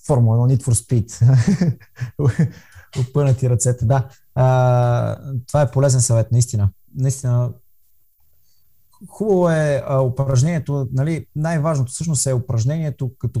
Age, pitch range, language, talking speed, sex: 20-39, 120-145 Hz, Bulgarian, 105 wpm, male